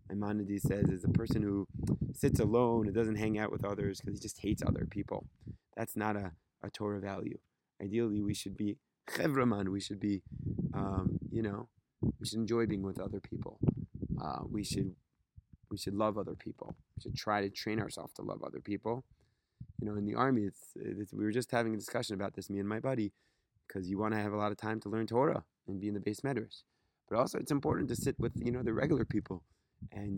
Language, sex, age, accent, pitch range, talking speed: English, male, 20-39, American, 100-115 Hz, 225 wpm